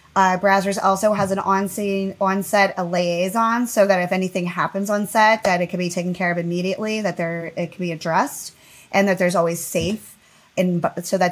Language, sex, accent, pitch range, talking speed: English, female, American, 175-220 Hz, 195 wpm